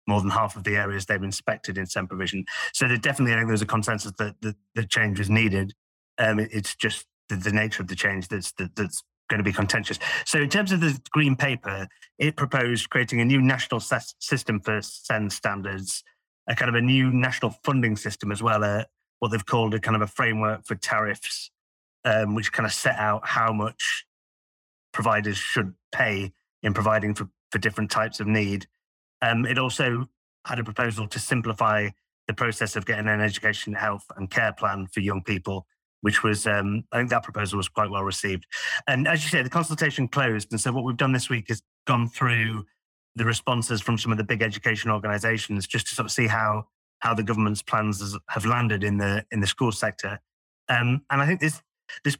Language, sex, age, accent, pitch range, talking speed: English, male, 30-49, British, 105-125 Hz, 210 wpm